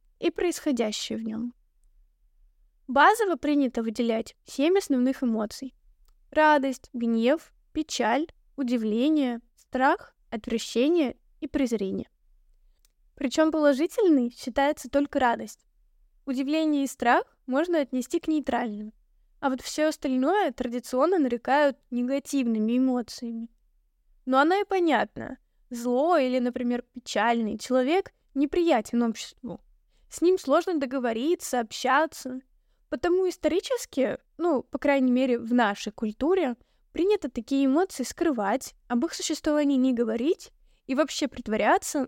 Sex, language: female, Russian